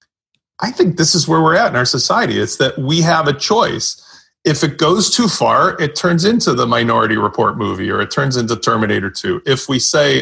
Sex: male